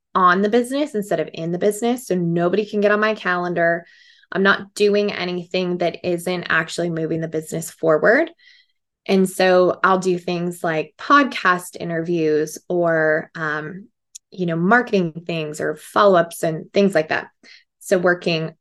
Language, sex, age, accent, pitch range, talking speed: English, female, 20-39, American, 170-205 Hz, 155 wpm